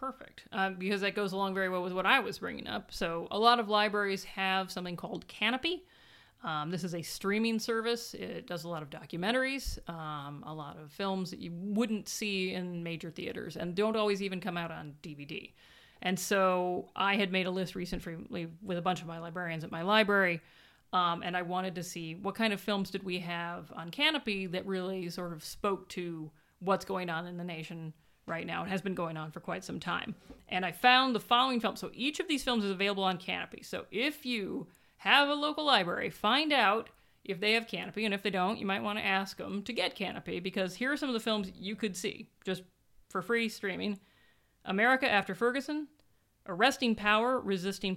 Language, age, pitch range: English, 30-49, 180-220 Hz